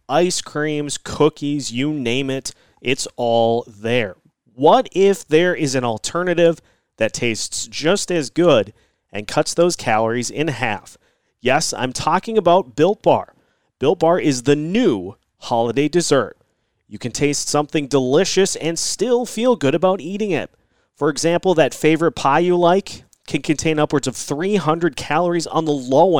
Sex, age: male, 30-49